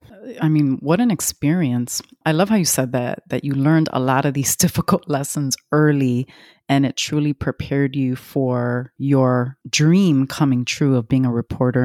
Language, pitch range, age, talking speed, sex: English, 130-160 Hz, 30-49, 175 wpm, female